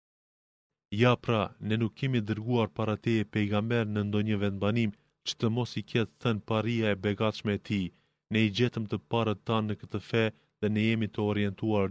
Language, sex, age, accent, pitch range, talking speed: Greek, male, 30-49, Turkish, 105-115 Hz, 175 wpm